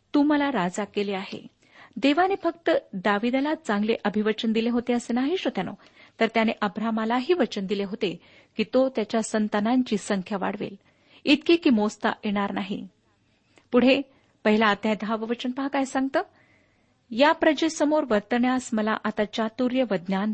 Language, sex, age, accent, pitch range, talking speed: Marathi, female, 50-69, native, 210-270 Hz, 125 wpm